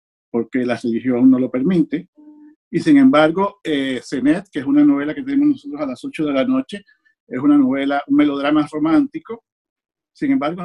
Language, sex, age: Spanish, male, 50-69